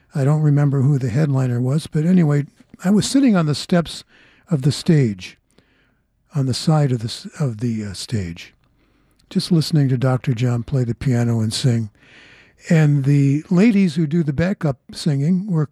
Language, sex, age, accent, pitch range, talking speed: English, male, 60-79, American, 130-180 Hz, 175 wpm